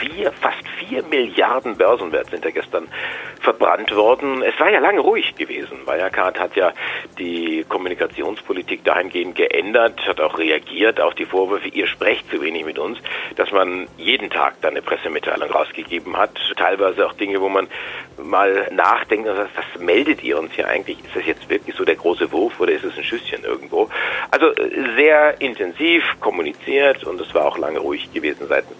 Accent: German